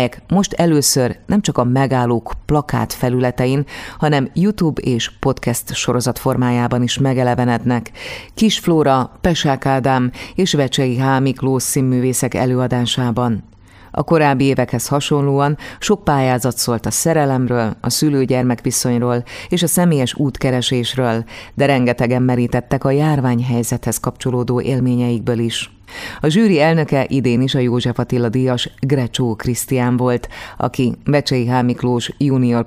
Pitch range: 120-140 Hz